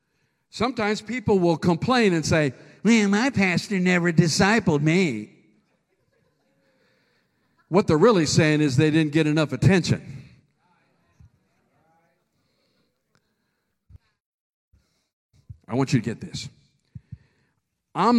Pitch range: 135-185 Hz